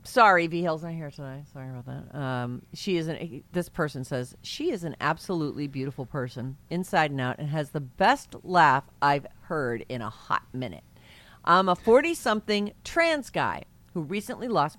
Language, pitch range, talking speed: English, 140-180 Hz, 180 wpm